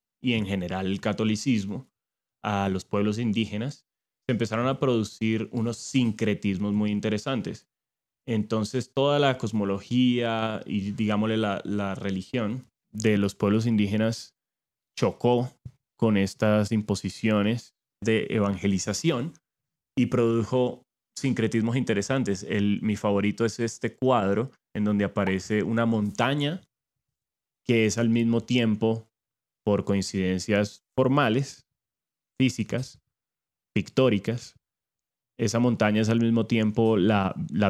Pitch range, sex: 105-120 Hz, male